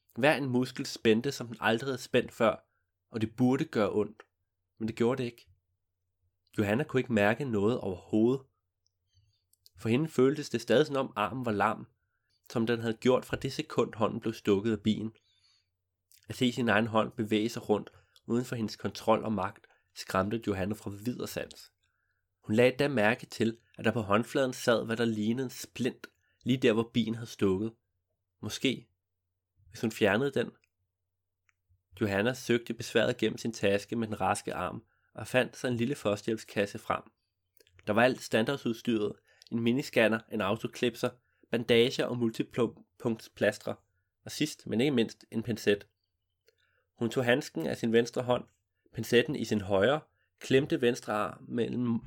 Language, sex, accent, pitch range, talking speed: Danish, male, native, 100-120 Hz, 165 wpm